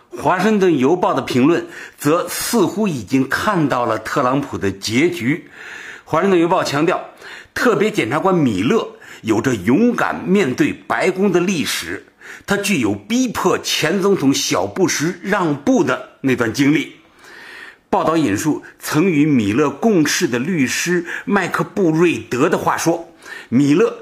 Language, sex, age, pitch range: Chinese, male, 60-79, 130-200 Hz